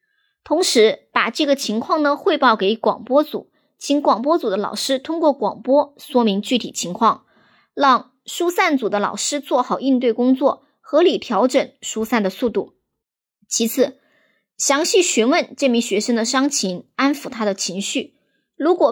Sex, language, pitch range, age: male, Chinese, 220-295 Hz, 20-39